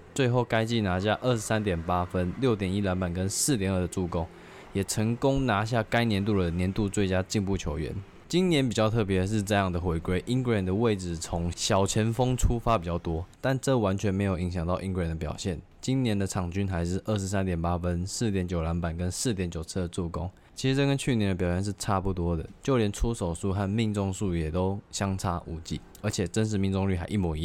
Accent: native